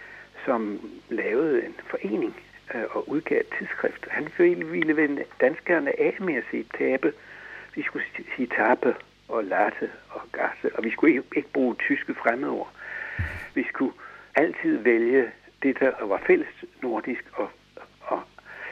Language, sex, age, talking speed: Danish, male, 60-79, 140 wpm